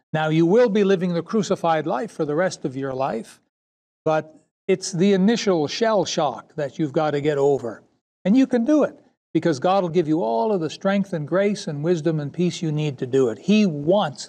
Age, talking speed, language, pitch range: 60-79, 225 wpm, English, 155-200 Hz